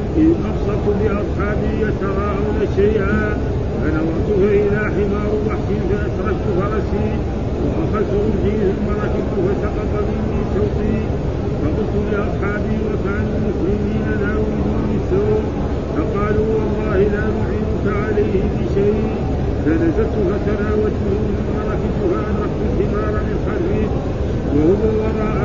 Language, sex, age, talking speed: Arabic, male, 50-69, 95 wpm